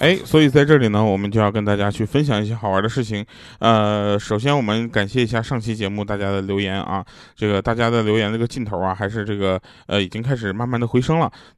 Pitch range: 105-140 Hz